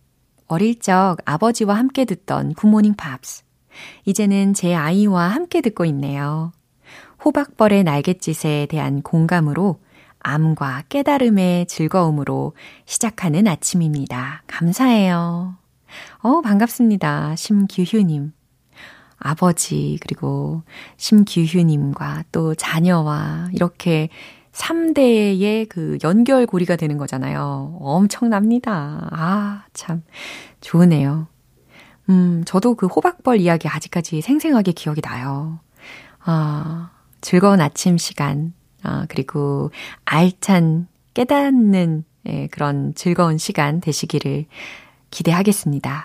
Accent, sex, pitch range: native, female, 150-205 Hz